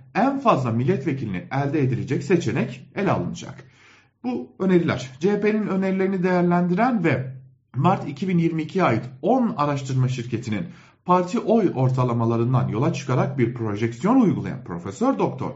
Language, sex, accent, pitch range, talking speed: German, male, Turkish, 125-185 Hz, 115 wpm